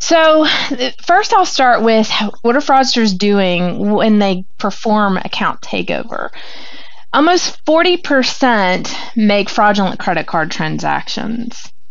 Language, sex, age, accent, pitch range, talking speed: English, female, 30-49, American, 190-245 Hz, 105 wpm